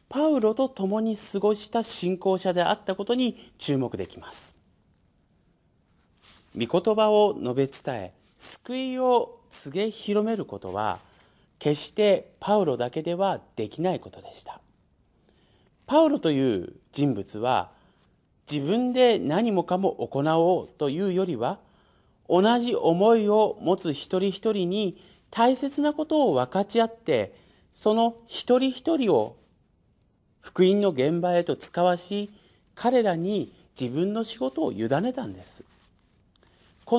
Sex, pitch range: male, 160-230 Hz